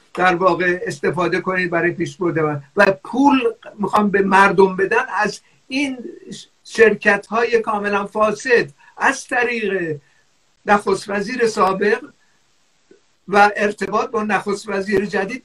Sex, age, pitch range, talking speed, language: male, 50-69, 180-230 Hz, 115 wpm, Persian